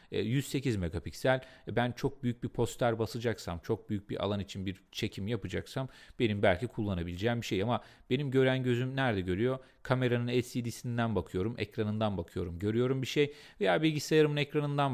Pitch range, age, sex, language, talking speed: 110-155 Hz, 40-59, male, Turkish, 155 wpm